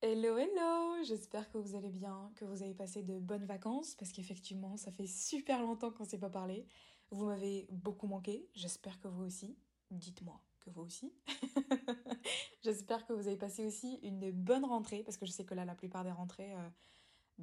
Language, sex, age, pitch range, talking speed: French, female, 20-39, 195-240 Hz, 195 wpm